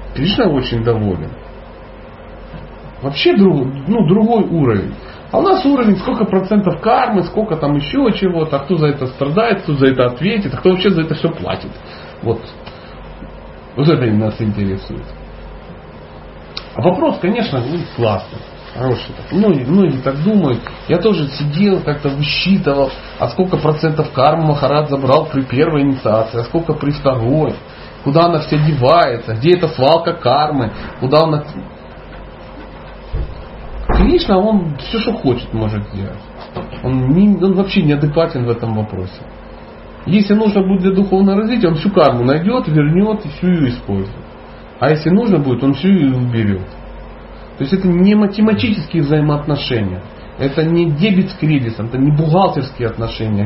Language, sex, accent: Russian, male, native